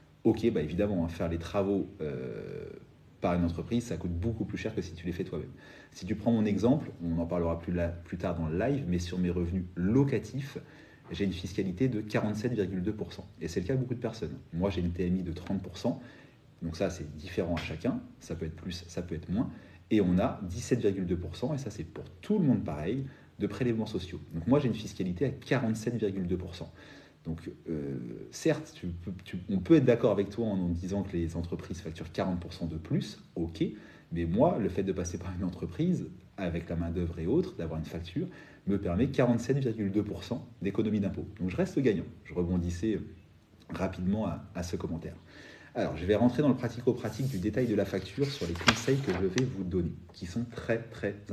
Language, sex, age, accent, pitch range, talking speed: French, male, 40-59, French, 85-115 Hz, 200 wpm